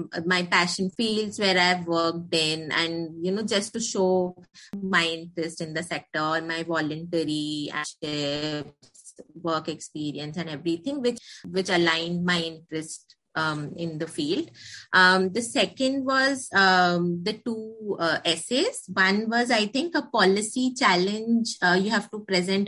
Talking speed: 145 wpm